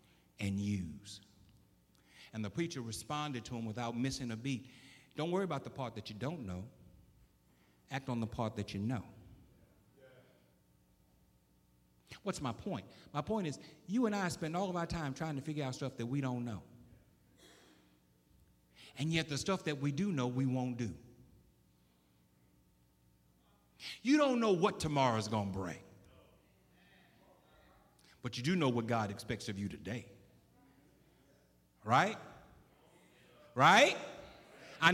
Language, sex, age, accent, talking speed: English, male, 60-79, American, 145 wpm